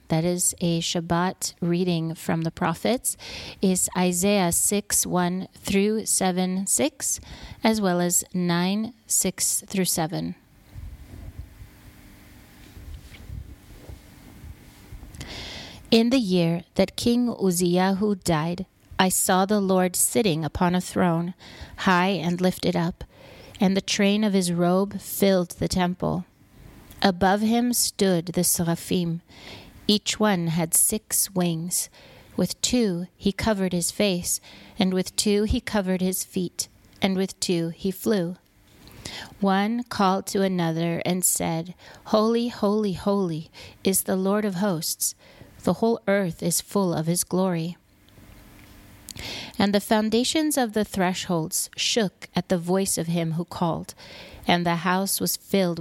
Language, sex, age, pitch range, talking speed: English, female, 30-49, 170-200 Hz, 130 wpm